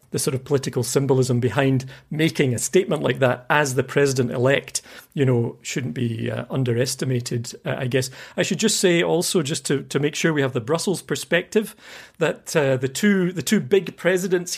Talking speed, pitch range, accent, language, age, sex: 200 wpm, 130-170 Hz, British, English, 40-59, male